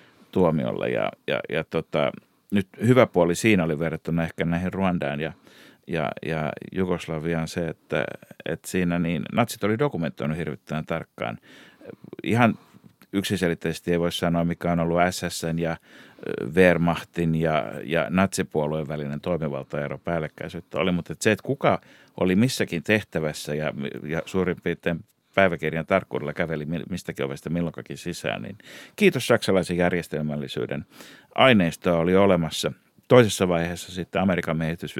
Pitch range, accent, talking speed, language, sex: 80-95 Hz, native, 130 wpm, Finnish, male